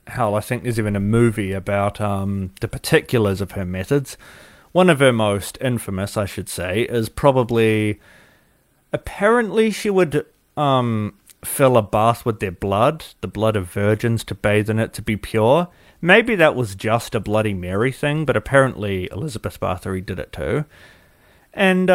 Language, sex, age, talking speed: English, male, 30-49, 165 wpm